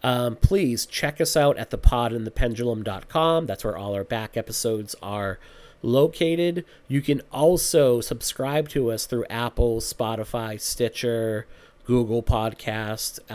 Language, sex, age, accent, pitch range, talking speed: English, male, 40-59, American, 115-145 Hz, 120 wpm